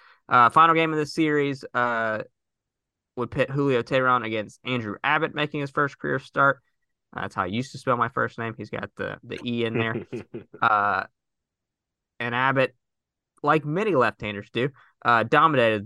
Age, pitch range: 20-39, 105-130 Hz